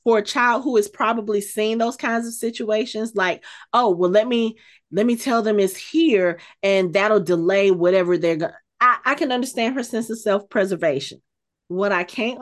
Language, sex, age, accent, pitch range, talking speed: English, female, 30-49, American, 210-310 Hz, 185 wpm